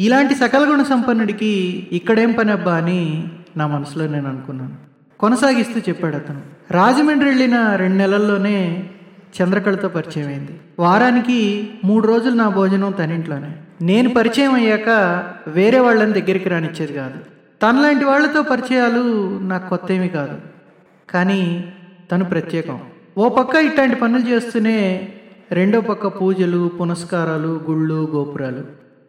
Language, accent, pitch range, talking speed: Telugu, native, 165-225 Hz, 120 wpm